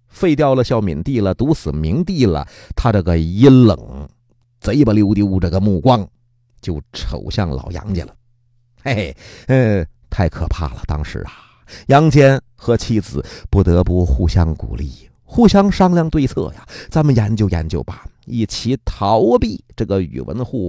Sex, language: male, Chinese